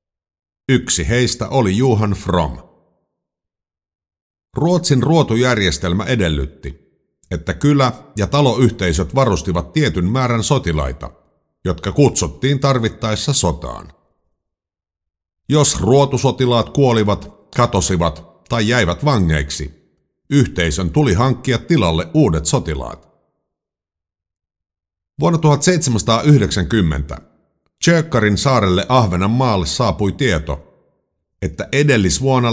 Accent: native